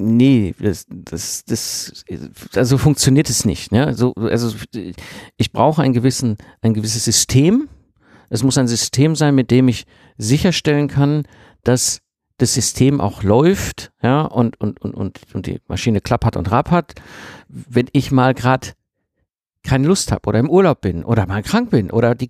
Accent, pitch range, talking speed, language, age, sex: German, 105-135 Hz, 165 wpm, German, 50-69, male